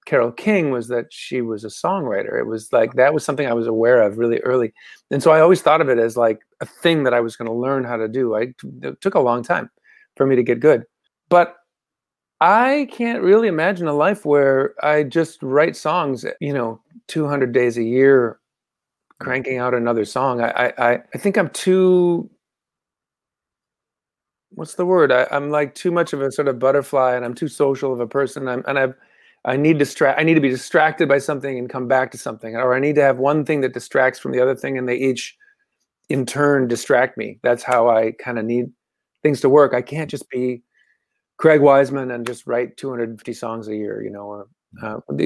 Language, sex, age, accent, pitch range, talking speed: English, male, 40-59, American, 120-150 Hz, 225 wpm